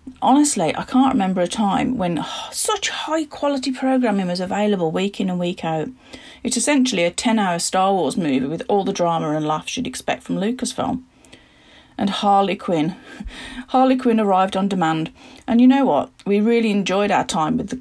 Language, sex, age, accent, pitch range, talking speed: English, female, 40-59, British, 195-260 Hz, 185 wpm